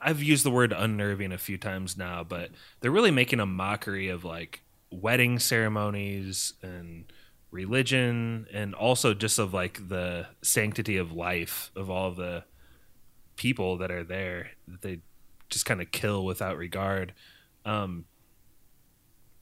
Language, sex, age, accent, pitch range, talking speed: English, male, 20-39, American, 95-125 Hz, 145 wpm